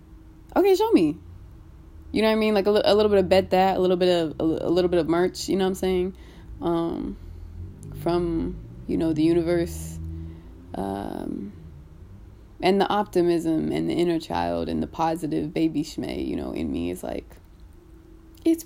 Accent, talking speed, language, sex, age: American, 190 wpm, English, female, 20-39